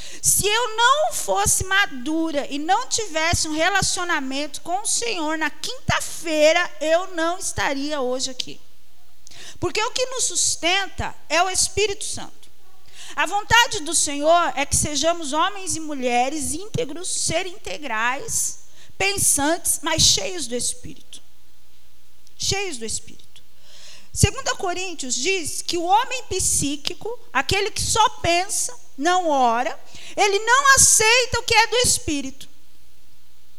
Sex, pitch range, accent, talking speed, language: female, 285-410 Hz, Brazilian, 125 wpm, Portuguese